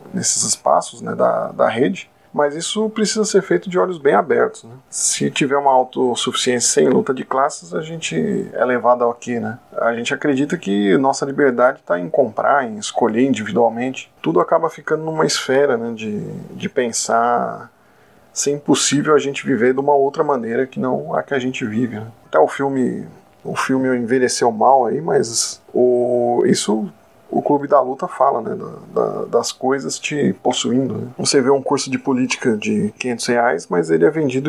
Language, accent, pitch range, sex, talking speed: Portuguese, Brazilian, 120-155 Hz, male, 185 wpm